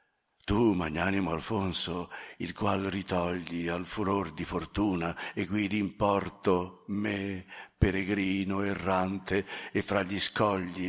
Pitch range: 90-105 Hz